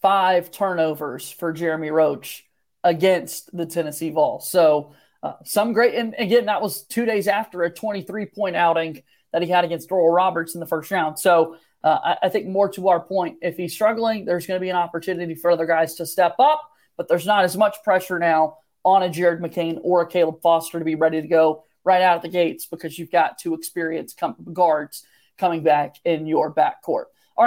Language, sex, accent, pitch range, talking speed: English, male, American, 170-210 Hz, 205 wpm